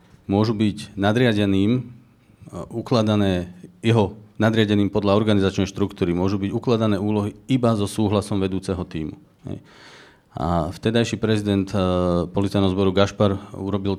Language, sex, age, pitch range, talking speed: Slovak, male, 40-59, 95-115 Hz, 105 wpm